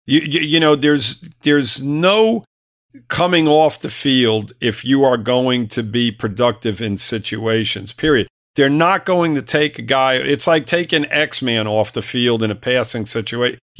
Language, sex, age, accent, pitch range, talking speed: English, male, 50-69, American, 115-145 Hz, 170 wpm